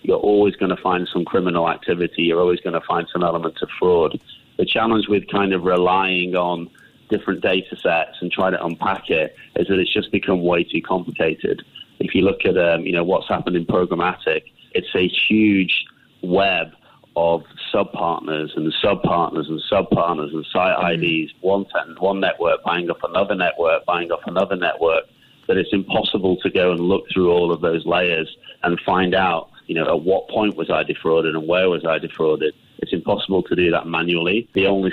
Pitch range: 85-95 Hz